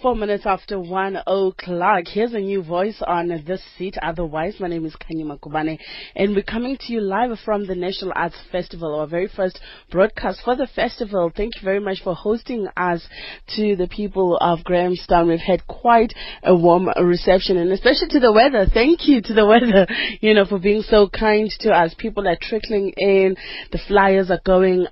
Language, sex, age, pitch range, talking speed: English, female, 30-49, 175-205 Hz, 195 wpm